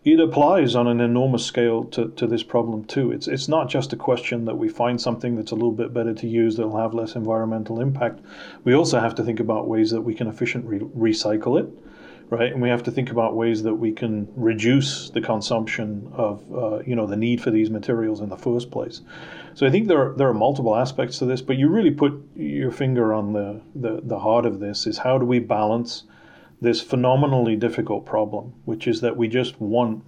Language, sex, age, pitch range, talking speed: English, male, 40-59, 110-125 Hz, 225 wpm